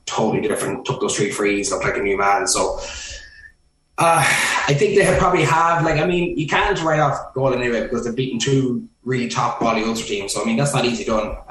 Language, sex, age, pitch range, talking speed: English, male, 20-39, 110-125 Hz, 230 wpm